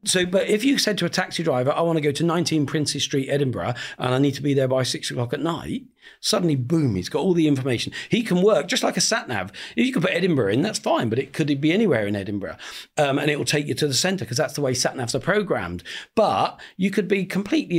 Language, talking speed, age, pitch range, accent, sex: English, 265 wpm, 40-59, 130-185 Hz, British, male